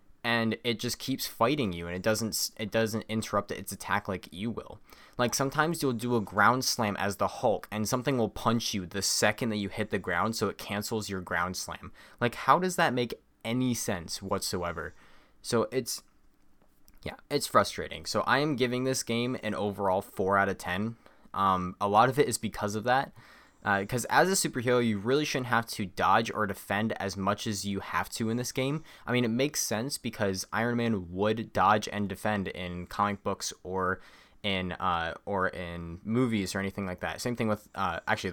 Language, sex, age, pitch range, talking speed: English, male, 20-39, 95-120 Hz, 205 wpm